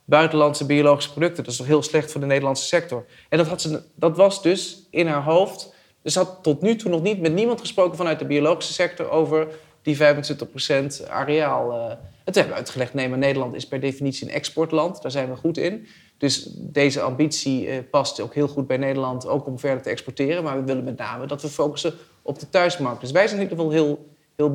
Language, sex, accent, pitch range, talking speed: Dutch, male, Dutch, 135-160 Hz, 225 wpm